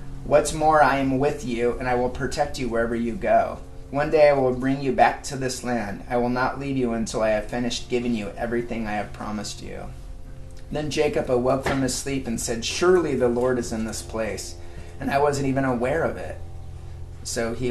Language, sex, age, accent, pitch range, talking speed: English, male, 30-49, American, 100-130 Hz, 215 wpm